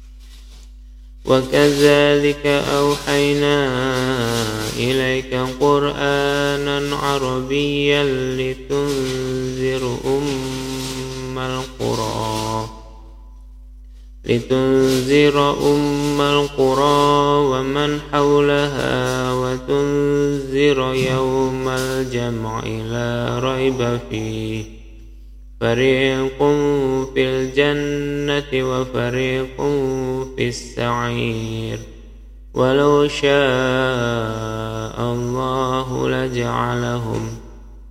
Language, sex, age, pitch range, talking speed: Indonesian, male, 20-39, 115-140 Hz, 45 wpm